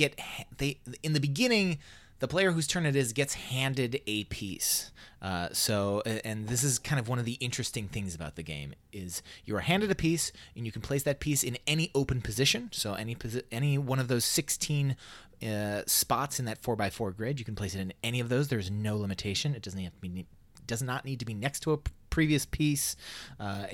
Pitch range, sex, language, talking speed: 105-140 Hz, male, English, 225 wpm